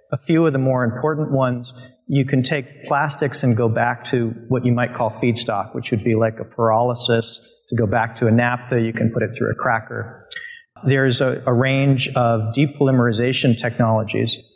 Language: English